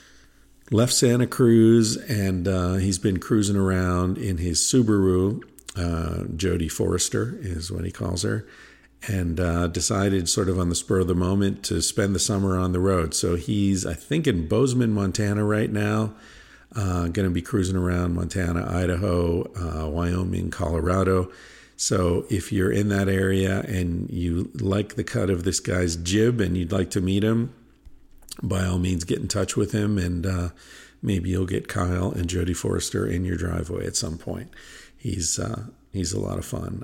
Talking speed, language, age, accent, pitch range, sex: 175 wpm, English, 50-69, American, 90-105 Hz, male